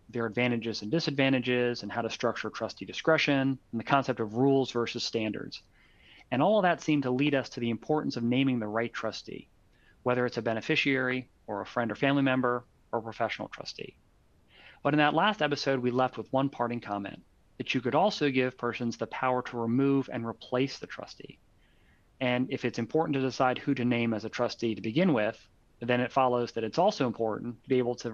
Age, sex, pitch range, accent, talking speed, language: 30-49, male, 115-135 Hz, American, 210 wpm, English